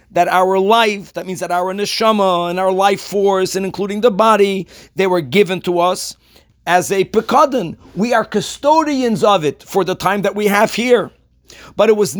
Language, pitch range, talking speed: English, 185-235 Hz, 190 wpm